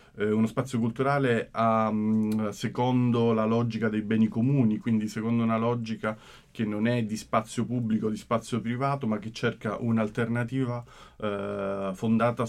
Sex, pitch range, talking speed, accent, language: male, 105-130 Hz, 140 wpm, native, Italian